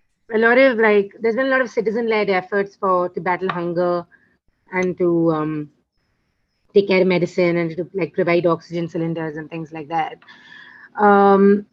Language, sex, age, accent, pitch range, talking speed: English, female, 30-49, Indian, 175-225 Hz, 165 wpm